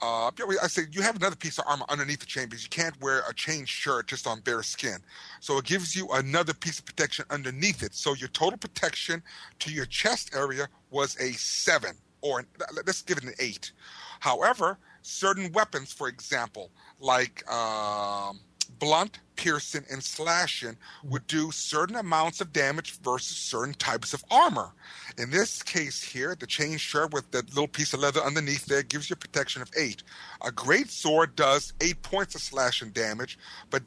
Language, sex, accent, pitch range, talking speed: English, male, American, 135-160 Hz, 185 wpm